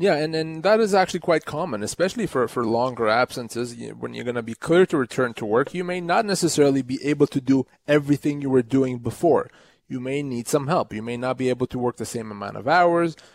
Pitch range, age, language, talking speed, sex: 120-155 Hz, 30-49, English, 240 wpm, male